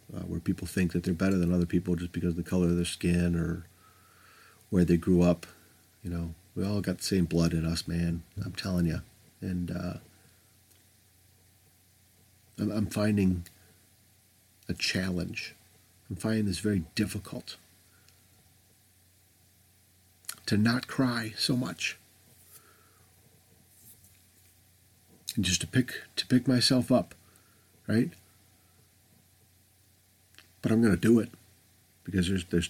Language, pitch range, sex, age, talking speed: English, 90-110 Hz, male, 50-69, 130 wpm